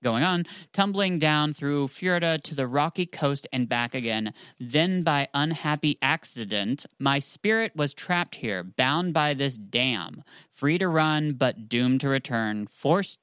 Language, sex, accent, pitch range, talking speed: English, male, American, 120-150 Hz, 155 wpm